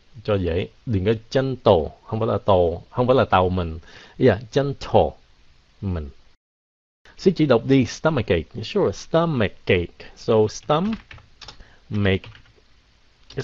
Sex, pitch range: male, 95-135 Hz